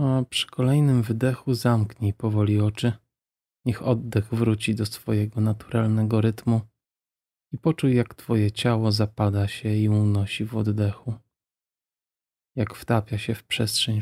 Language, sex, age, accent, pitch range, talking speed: Polish, male, 20-39, native, 105-120 Hz, 130 wpm